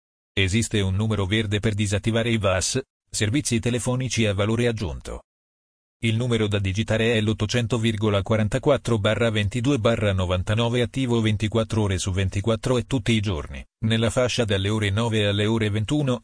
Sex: male